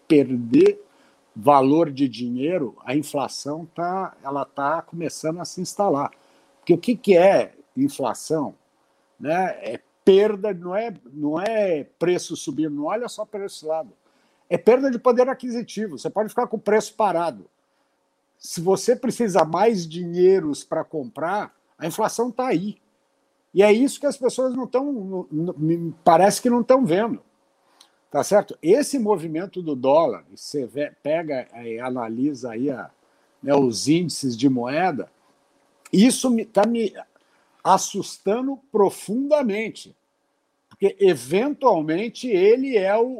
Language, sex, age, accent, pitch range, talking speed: Portuguese, male, 60-79, Brazilian, 160-240 Hz, 135 wpm